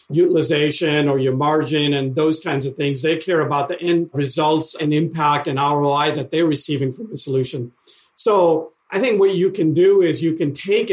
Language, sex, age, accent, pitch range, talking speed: English, male, 50-69, American, 145-170 Hz, 200 wpm